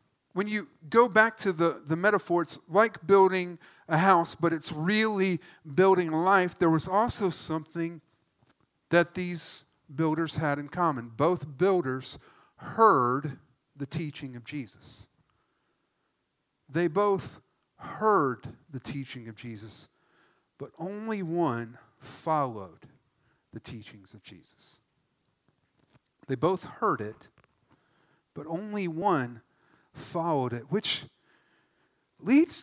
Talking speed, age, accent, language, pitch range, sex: 115 wpm, 50-69, American, English, 135-185 Hz, male